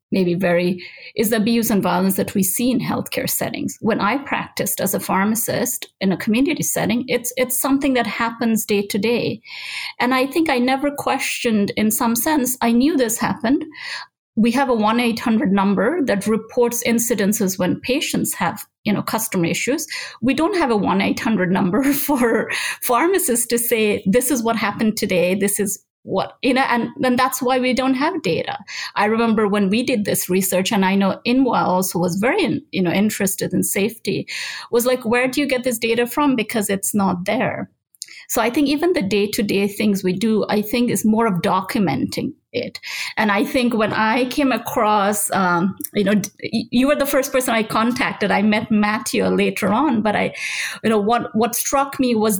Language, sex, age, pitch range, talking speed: English, female, 30-49, 210-255 Hz, 190 wpm